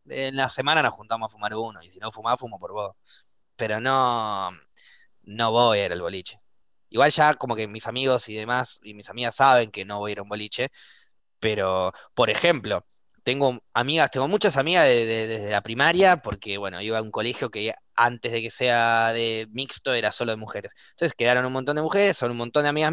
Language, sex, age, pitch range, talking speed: Spanish, male, 20-39, 110-170 Hz, 215 wpm